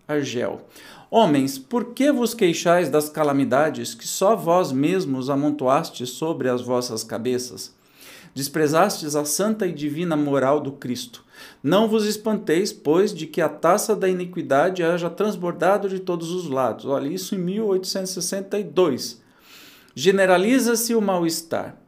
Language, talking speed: Portuguese, 130 wpm